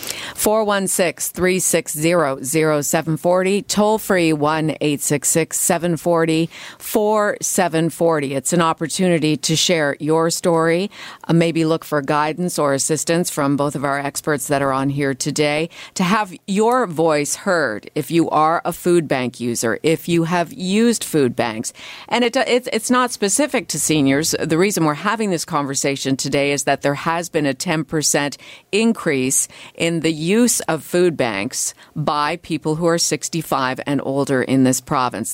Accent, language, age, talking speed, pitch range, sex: American, English, 50-69, 145 wpm, 140-175 Hz, female